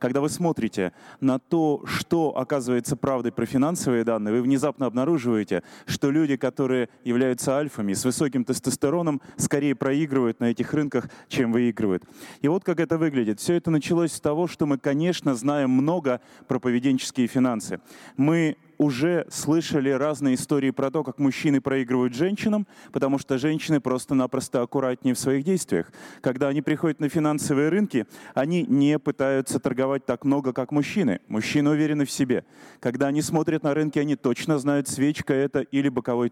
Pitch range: 130-155 Hz